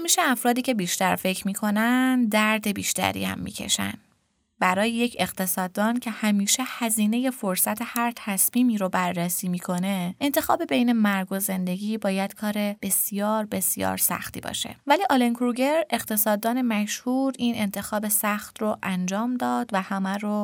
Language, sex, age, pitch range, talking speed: Persian, female, 20-39, 185-245 Hz, 140 wpm